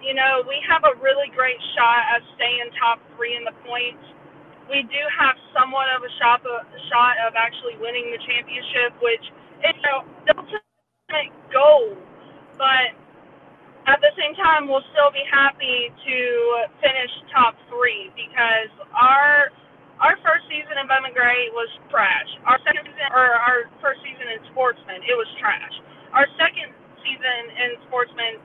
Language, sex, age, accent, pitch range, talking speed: English, female, 20-39, American, 240-290 Hz, 160 wpm